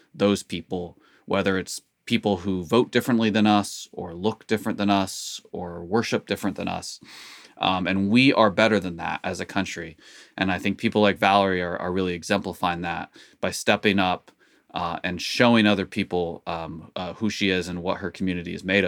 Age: 20-39